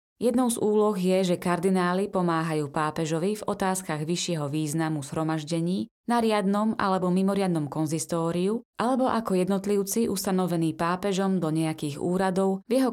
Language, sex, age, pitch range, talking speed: Slovak, female, 20-39, 165-200 Hz, 130 wpm